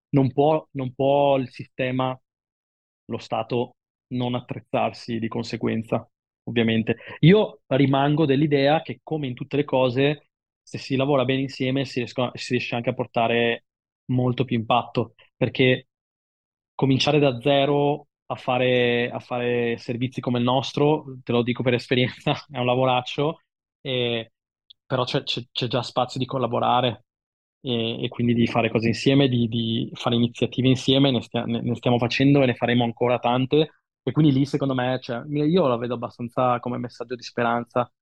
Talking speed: 160 wpm